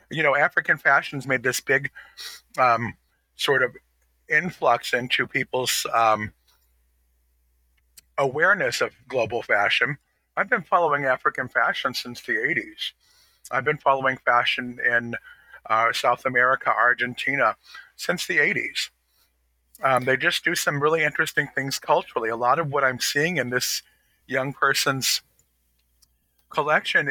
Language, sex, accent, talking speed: English, male, American, 130 wpm